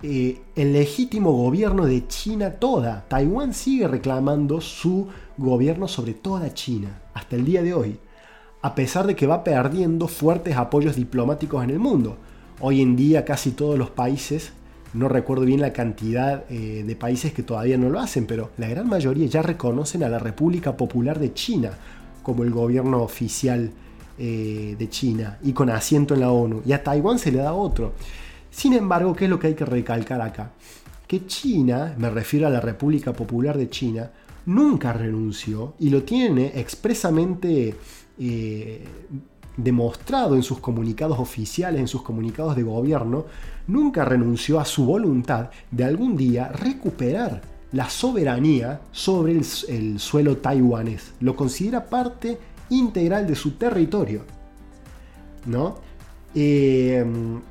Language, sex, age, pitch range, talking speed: Spanish, male, 30-49, 120-155 Hz, 150 wpm